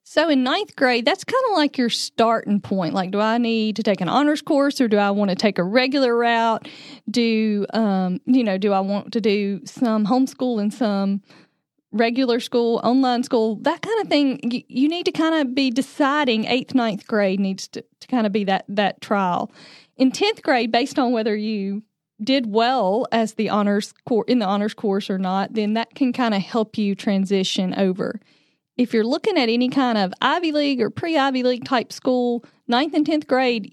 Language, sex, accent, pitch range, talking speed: English, female, American, 205-255 Hz, 205 wpm